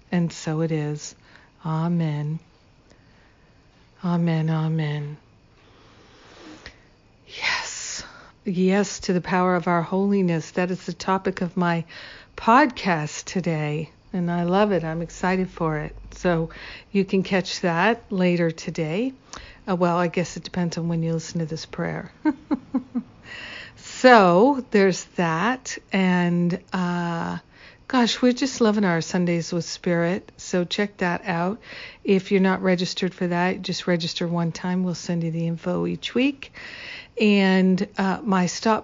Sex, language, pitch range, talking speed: female, English, 170-195 Hz, 135 wpm